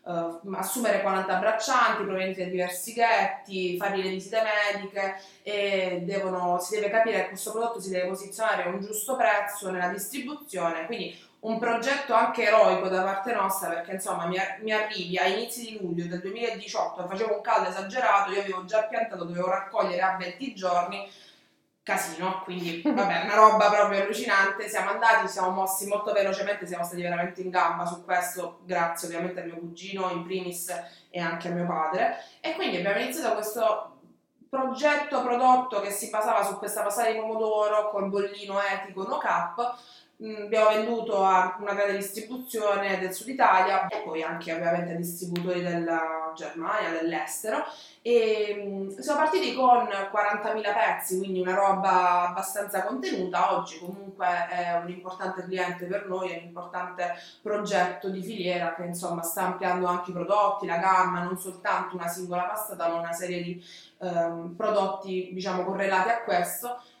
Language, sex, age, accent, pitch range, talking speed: Italian, female, 20-39, native, 180-215 Hz, 160 wpm